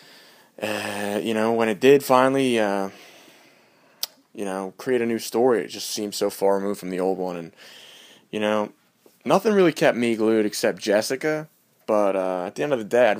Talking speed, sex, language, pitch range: 195 wpm, male, English, 100-125 Hz